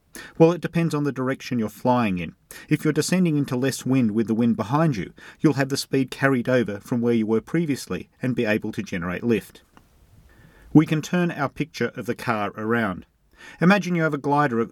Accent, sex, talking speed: Australian, male, 210 wpm